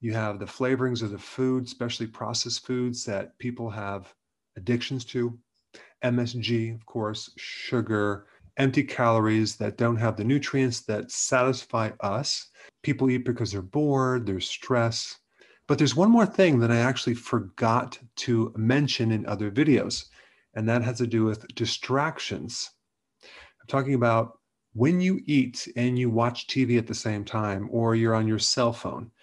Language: English